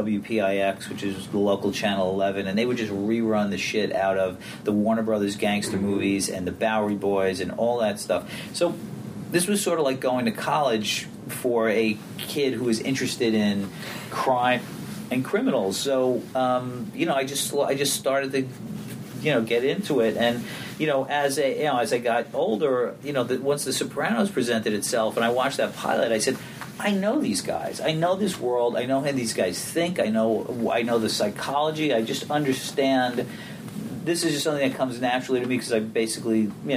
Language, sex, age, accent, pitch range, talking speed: English, male, 40-59, American, 105-140 Hz, 205 wpm